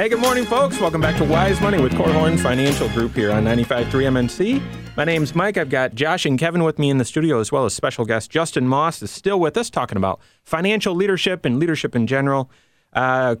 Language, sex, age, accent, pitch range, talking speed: English, male, 30-49, American, 110-160 Hz, 225 wpm